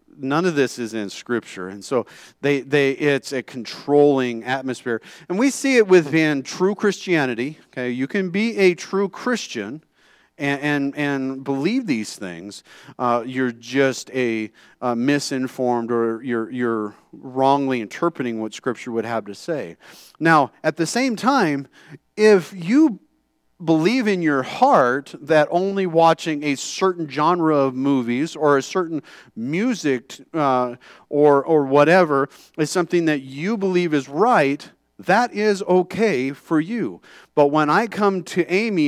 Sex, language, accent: male, English, American